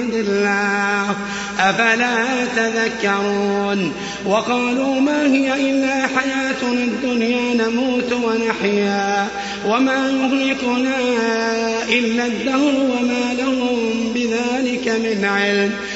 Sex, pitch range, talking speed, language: male, 220-260 Hz, 70 wpm, Arabic